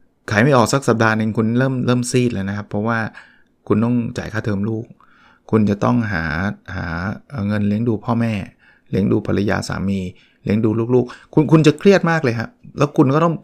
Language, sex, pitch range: Thai, male, 105-130 Hz